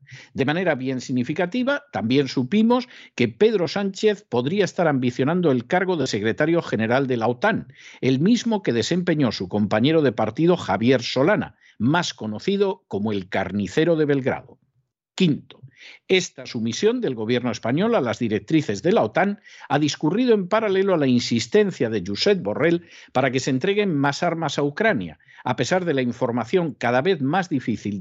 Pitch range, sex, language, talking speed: 125-180 Hz, male, Spanish, 165 wpm